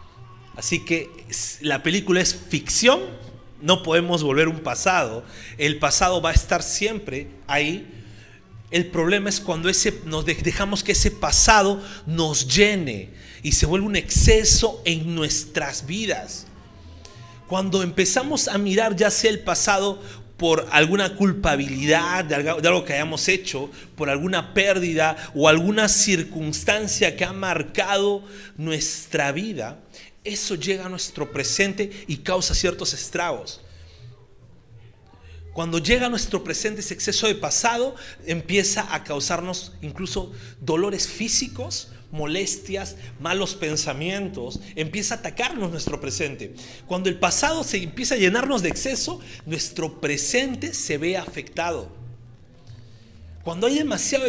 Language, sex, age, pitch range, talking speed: Spanish, male, 40-59, 140-200 Hz, 125 wpm